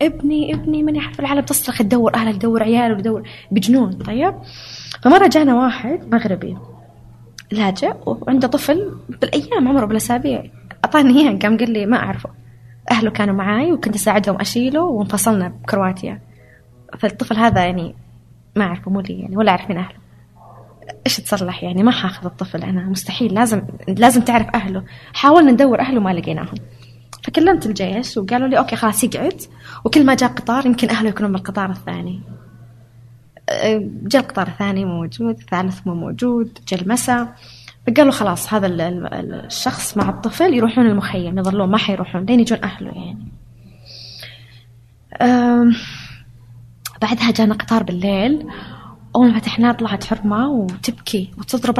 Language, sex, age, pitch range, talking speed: Arabic, female, 20-39, 180-240 Hz, 140 wpm